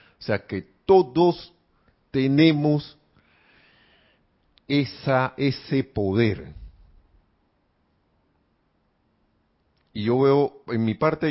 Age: 50-69